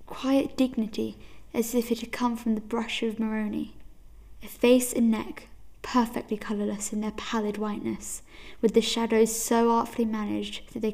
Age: 10-29